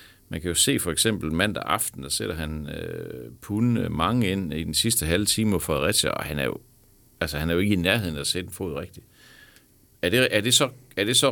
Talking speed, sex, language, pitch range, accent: 240 wpm, male, Danish, 85-115 Hz, native